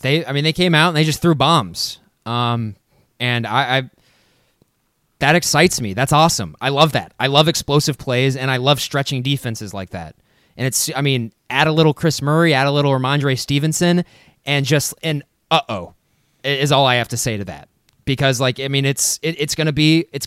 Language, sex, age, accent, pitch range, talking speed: English, male, 20-39, American, 125-155 Hz, 210 wpm